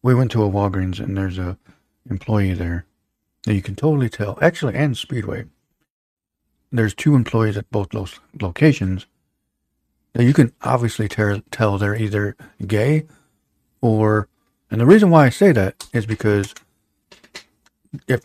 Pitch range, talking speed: 100-125 Hz, 145 wpm